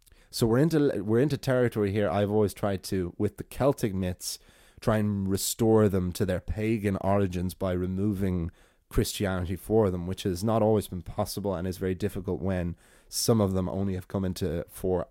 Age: 20-39